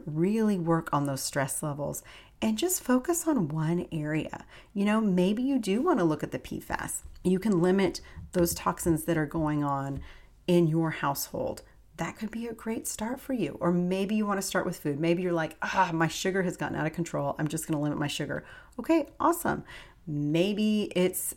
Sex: female